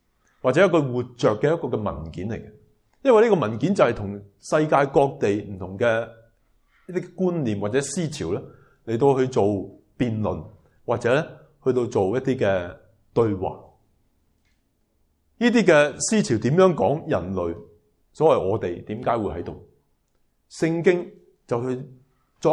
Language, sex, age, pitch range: Chinese, male, 30-49, 100-155 Hz